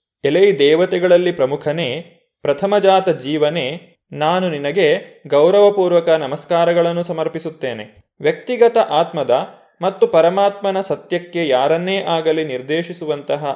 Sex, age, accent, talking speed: male, 20-39, native, 85 wpm